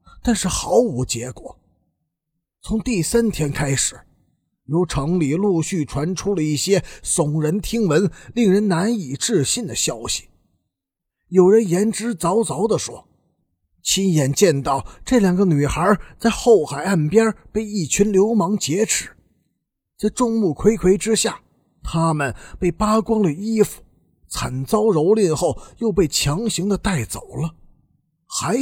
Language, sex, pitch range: Chinese, male, 145-210 Hz